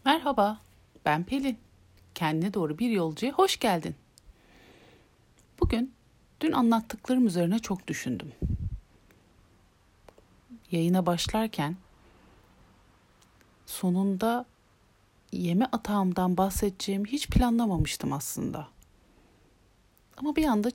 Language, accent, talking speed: Turkish, native, 80 wpm